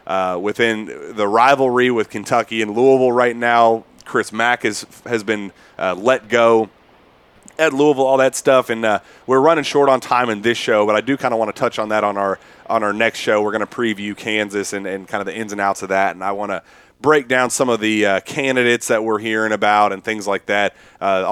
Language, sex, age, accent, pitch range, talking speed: English, male, 30-49, American, 105-130 Hz, 235 wpm